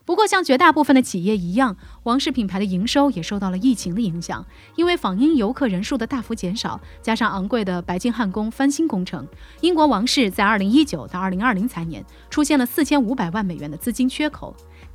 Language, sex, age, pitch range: Chinese, female, 30-49, 185-255 Hz